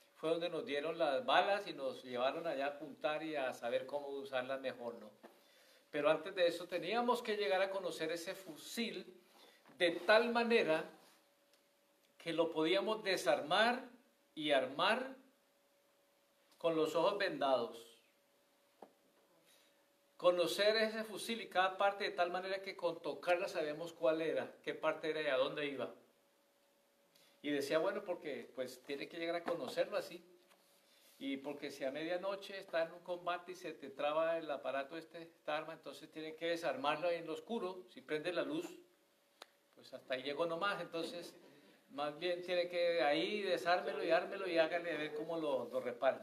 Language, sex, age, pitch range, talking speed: Spanish, male, 50-69, 155-200 Hz, 165 wpm